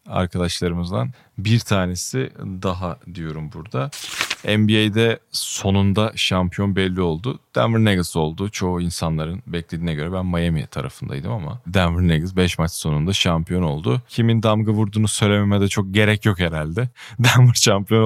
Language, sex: Turkish, male